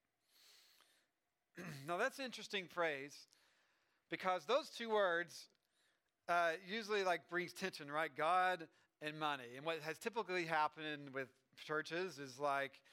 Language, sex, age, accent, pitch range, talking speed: English, male, 40-59, American, 135-175 Hz, 125 wpm